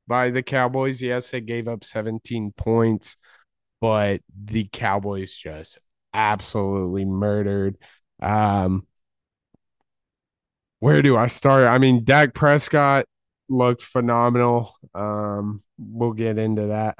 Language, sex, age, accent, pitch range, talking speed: English, male, 20-39, American, 110-125 Hz, 110 wpm